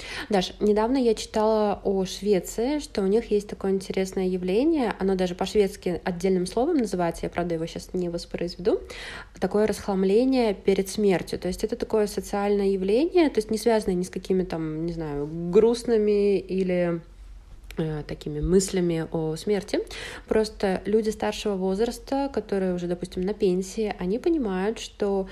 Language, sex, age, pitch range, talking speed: Polish, female, 20-39, 175-210 Hz, 150 wpm